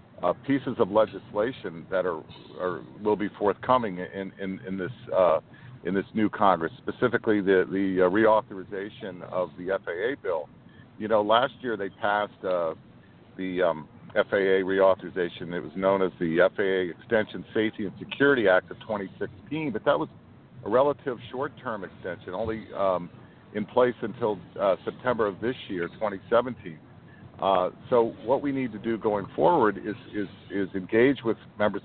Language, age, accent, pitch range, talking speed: English, 50-69, American, 95-120 Hz, 160 wpm